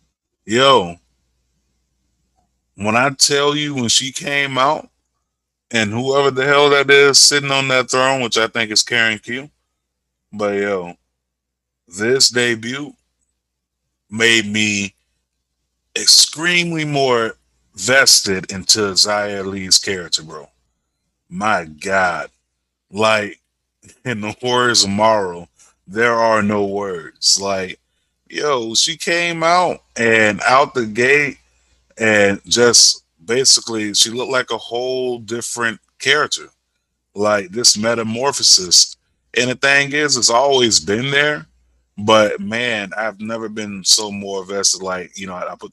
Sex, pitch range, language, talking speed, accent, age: male, 85-125 Hz, English, 125 wpm, American, 30-49